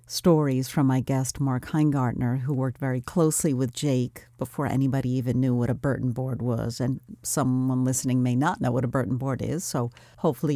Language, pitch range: English, 125-150 Hz